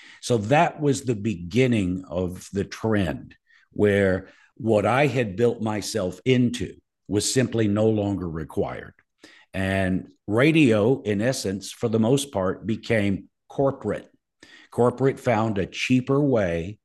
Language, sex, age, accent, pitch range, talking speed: English, male, 50-69, American, 95-120 Hz, 125 wpm